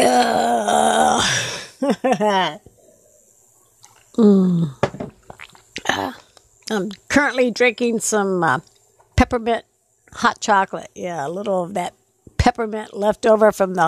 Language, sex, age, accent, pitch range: English, female, 60-79, American, 185-235 Hz